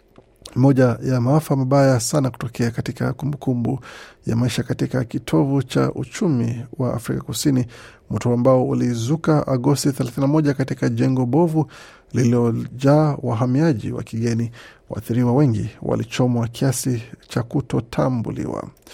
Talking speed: 115 wpm